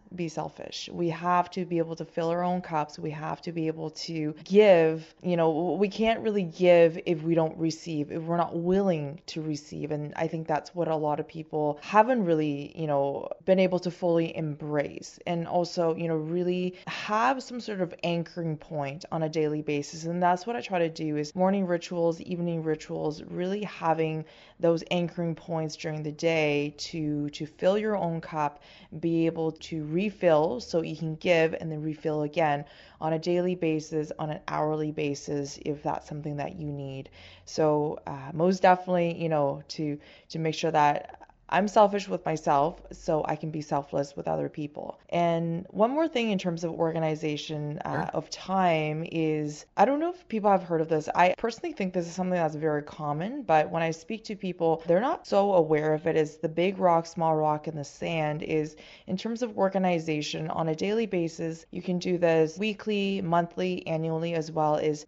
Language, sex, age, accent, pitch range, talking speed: English, female, 20-39, American, 155-180 Hz, 195 wpm